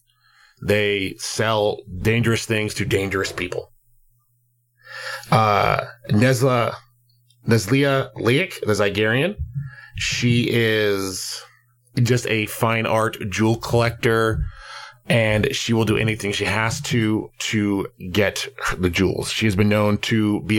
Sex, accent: male, American